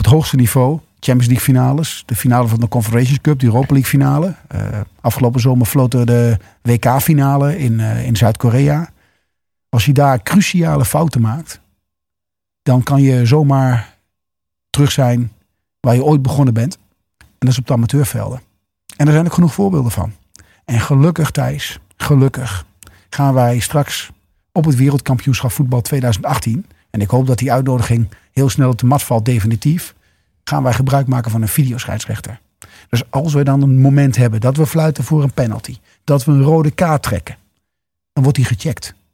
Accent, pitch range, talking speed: Dutch, 115-150 Hz, 170 wpm